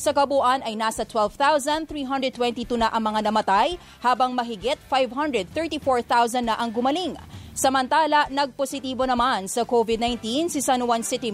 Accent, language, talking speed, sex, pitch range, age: Filipino, English, 125 wpm, female, 235-275 Hz, 20-39